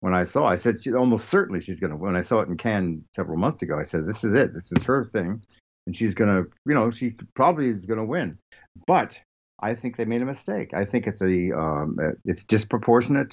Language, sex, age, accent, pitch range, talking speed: English, male, 60-79, American, 85-115 Hz, 250 wpm